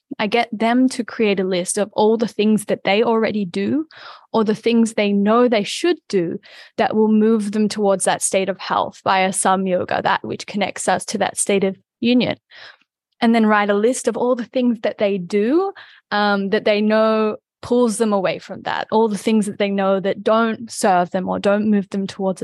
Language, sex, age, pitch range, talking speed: English, female, 10-29, 195-240 Hz, 215 wpm